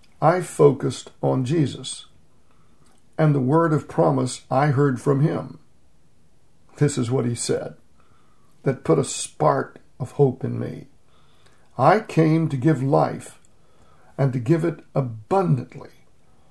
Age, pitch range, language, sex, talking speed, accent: 60-79, 125-155 Hz, English, male, 130 wpm, American